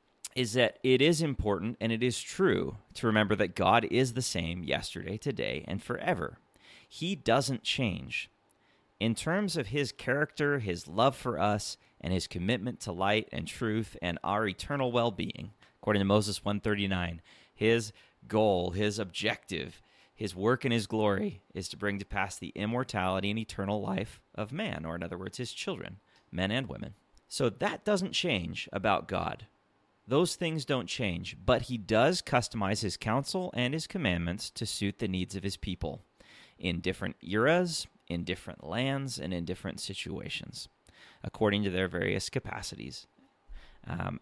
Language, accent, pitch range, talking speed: English, American, 95-125 Hz, 165 wpm